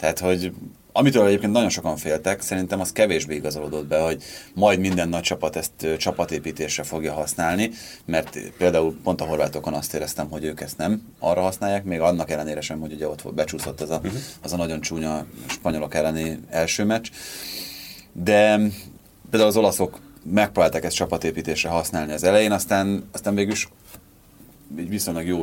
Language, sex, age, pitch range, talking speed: Hungarian, male, 30-49, 75-90 Hz, 165 wpm